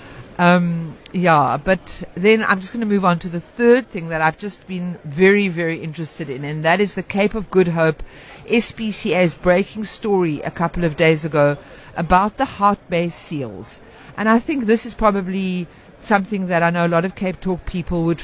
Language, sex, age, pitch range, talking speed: English, female, 50-69, 170-205 Hz, 195 wpm